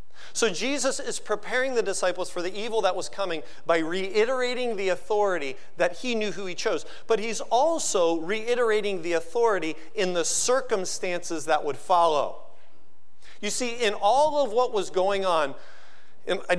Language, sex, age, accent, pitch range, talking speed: English, male, 40-59, American, 140-210 Hz, 160 wpm